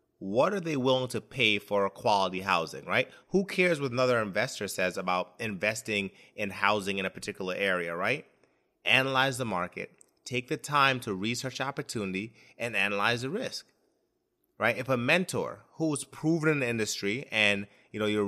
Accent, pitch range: American, 100-135 Hz